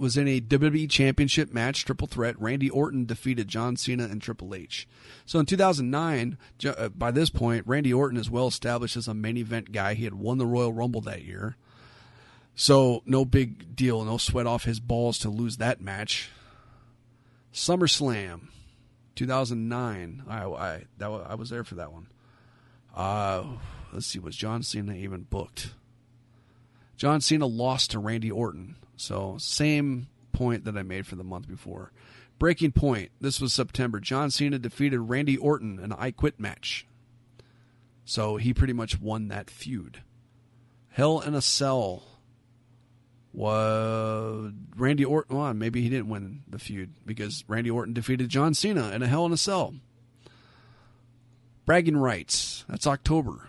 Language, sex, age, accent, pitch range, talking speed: English, male, 40-59, American, 110-130 Hz, 155 wpm